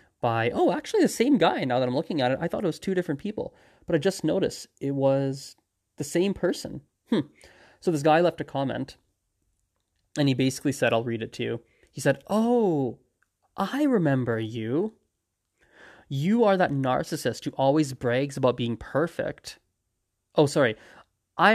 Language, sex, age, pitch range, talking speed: English, male, 20-39, 120-150 Hz, 175 wpm